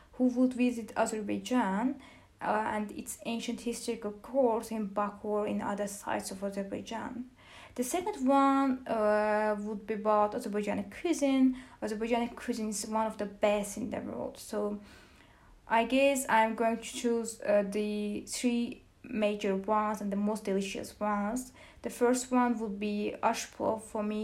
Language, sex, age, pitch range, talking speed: English, female, 20-39, 210-240 Hz, 155 wpm